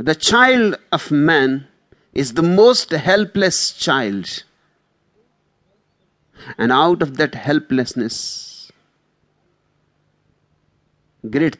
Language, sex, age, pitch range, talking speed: English, male, 50-69, 135-200 Hz, 80 wpm